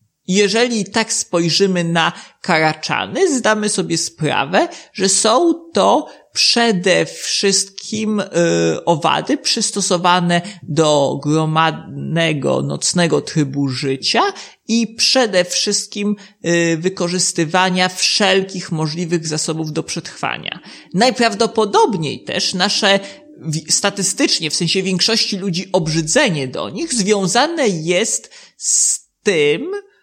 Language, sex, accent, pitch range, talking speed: Polish, male, native, 170-215 Hz, 90 wpm